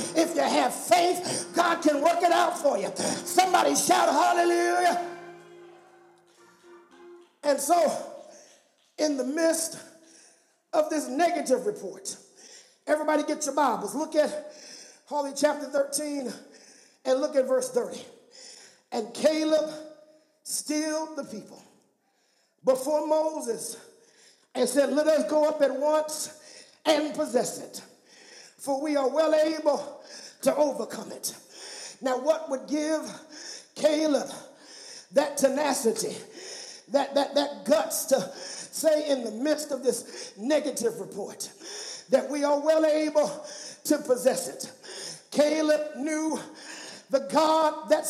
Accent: American